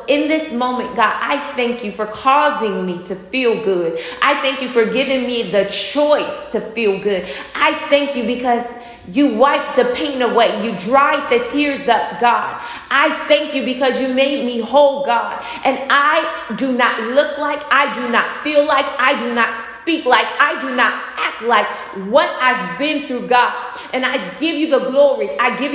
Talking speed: 190 wpm